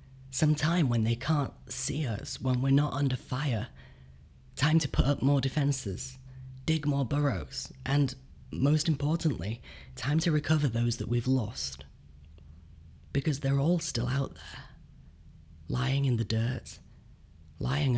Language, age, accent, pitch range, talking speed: English, 30-49, British, 95-135 Hz, 140 wpm